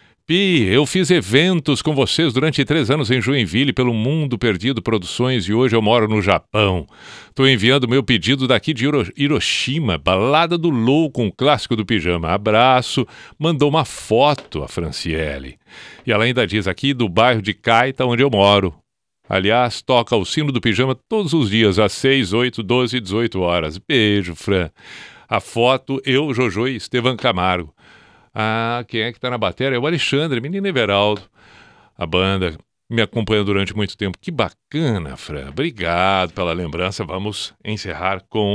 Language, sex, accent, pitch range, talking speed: Portuguese, male, Brazilian, 100-135 Hz, 160 wpm